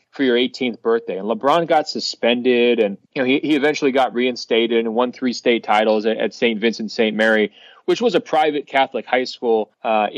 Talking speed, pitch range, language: 200 wpm, 120-150 Hz, English